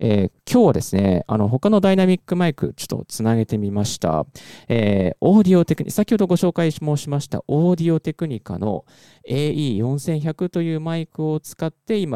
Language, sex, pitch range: Japanese, male, 110-150 Hz